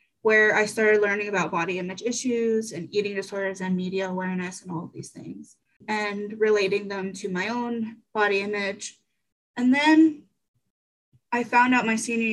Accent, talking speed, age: American, 165 wpm, 20-39